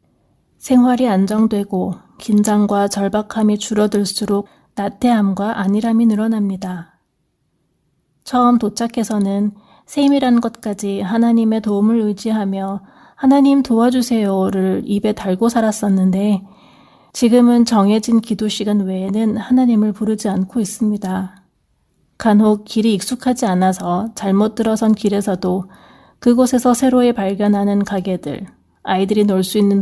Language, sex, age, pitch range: Korean, female, 30-49, 195-225 Hz